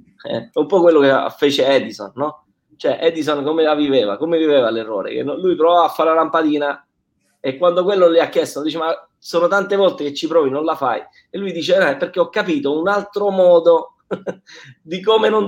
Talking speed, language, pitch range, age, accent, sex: 210 wpm, Italian, 145-195 Hz, 20-39, native, male